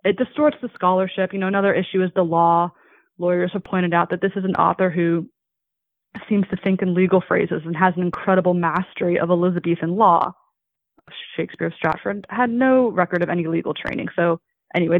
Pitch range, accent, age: 175-210 Hz, American, 20-39